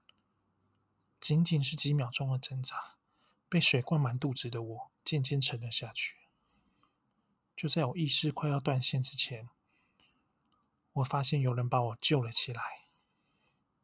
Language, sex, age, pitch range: Chinese, male, 20-39, 125-150 Hz